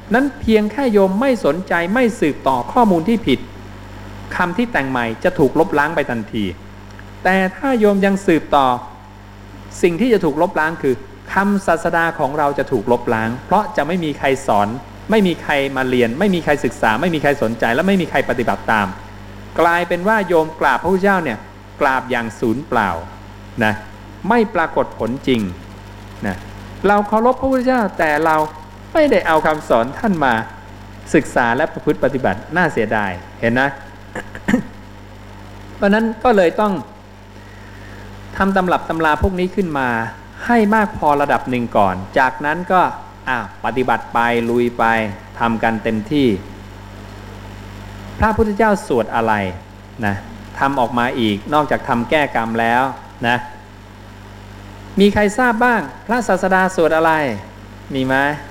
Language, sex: English, male